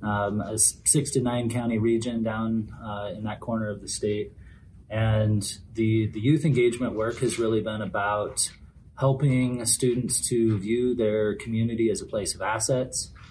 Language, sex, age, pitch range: English, male, 30-49, 105-115 Hz